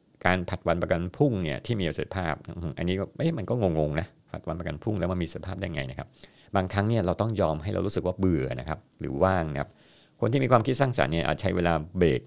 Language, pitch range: Thai, 80-100 Hz